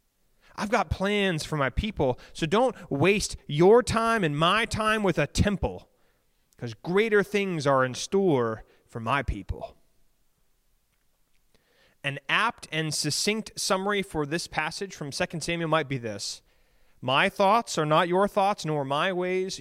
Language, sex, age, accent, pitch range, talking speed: English, male, 30-49, American, 140-195 Hz, 150 wpm